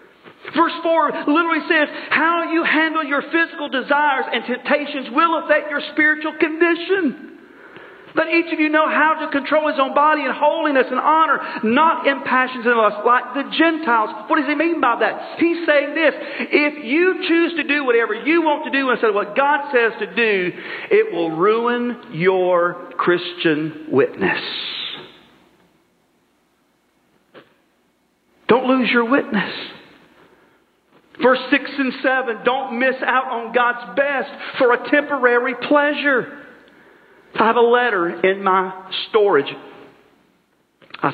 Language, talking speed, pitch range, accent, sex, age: English, 145 wpm, 220-315 Hz, American, male, 40-59